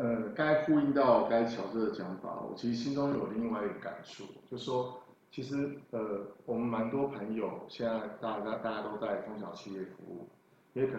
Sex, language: male, Chinese